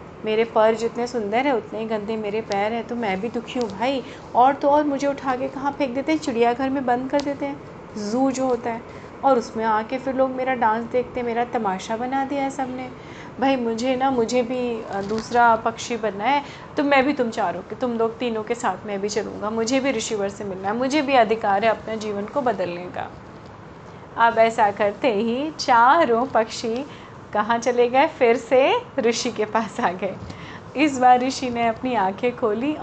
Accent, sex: native, female